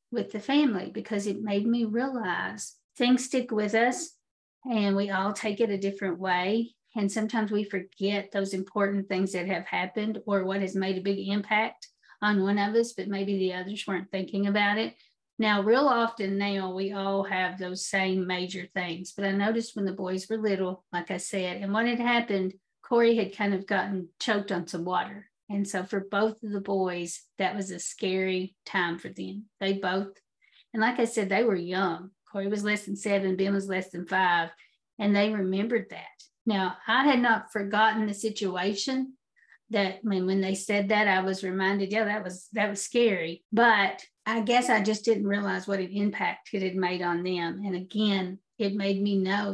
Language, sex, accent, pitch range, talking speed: English, female, American, 190-215 Hz, 200 wpm